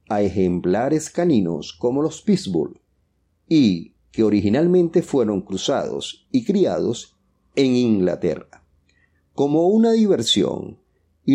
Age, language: 40-59, English